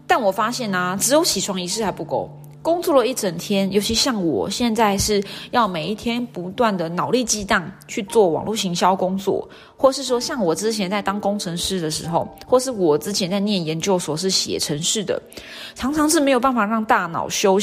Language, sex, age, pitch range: Chinese, female, 20-39, 175-230 Hz